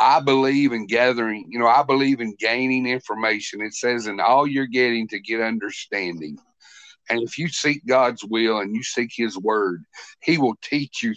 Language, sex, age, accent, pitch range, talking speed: English, male, 50-69, American, 115-145 Hz, 190 wpm